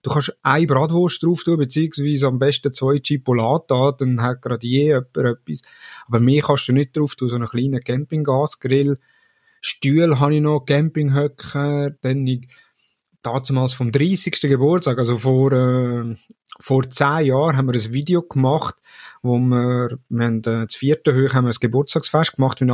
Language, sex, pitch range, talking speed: German, male, 125-150 Hz, 160 wpm